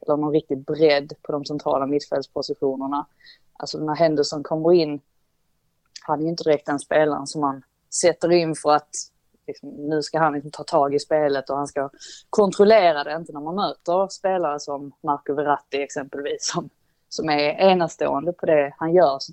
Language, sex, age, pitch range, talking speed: Swedish, female, 20-39, 145-190 Hz, 180 wpm